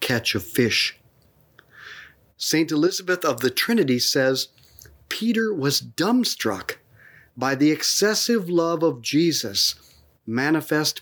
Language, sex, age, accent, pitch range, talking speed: English, male, 40-59, American, 115-170 Hz, 105 wpm